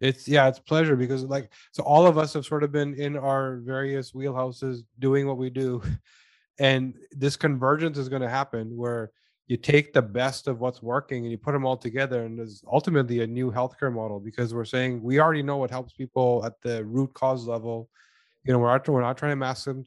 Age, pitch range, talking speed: 20-39, 125-145 Hz, 215 wpm